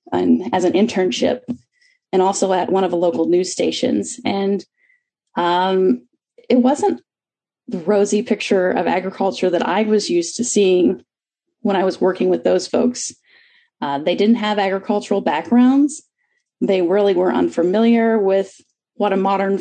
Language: English